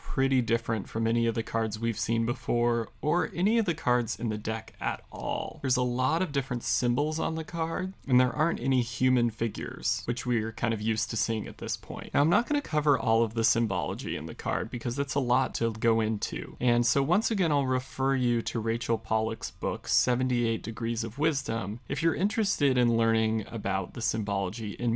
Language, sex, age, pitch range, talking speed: English, male, 30-49, 115-135 Hz, 215 wpm